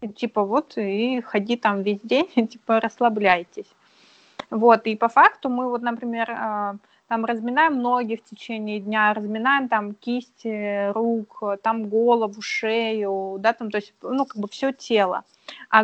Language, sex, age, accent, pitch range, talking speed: Russian, female, 20-39, native, 210-240 Hz, 150 wpm